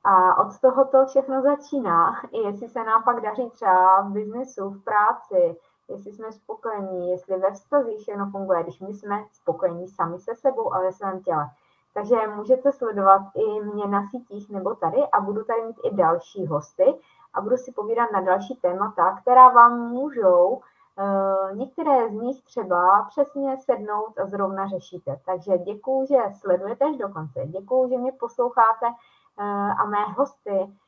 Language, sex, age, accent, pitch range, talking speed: Czech, female, 20-39, native, 190-255 Hz, 160 wpm